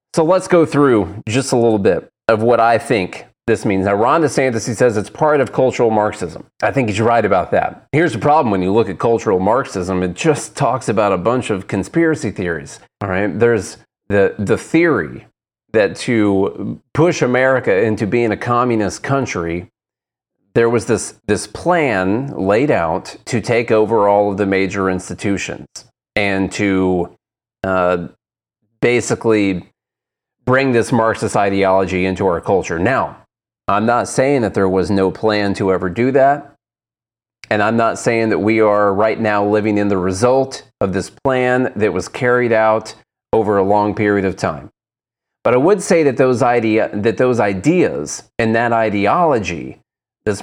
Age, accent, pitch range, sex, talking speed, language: 30-49, American, 100-125 Hz, male, 170 wpm, English